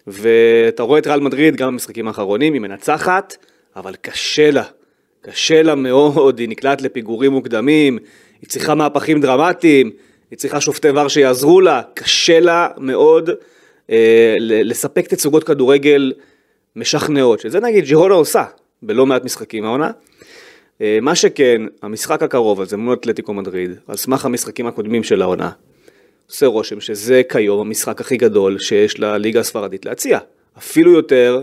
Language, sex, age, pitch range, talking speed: Hebrew, male, 30-49, 115-190 Hz, 145 wpm